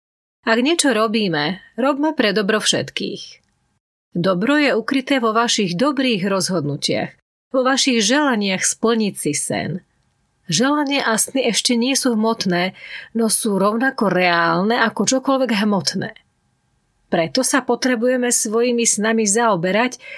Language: Slovak